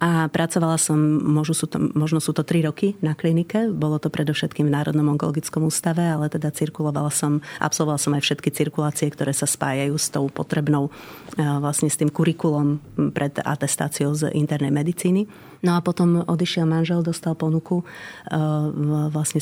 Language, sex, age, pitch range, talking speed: Slovak, female, 30-49, 150-165 Hz, 165 wpm